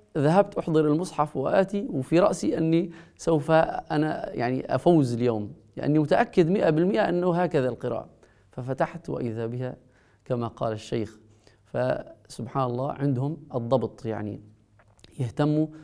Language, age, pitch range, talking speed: Arabic, 30-49, 115-155 Hz, 120 wpm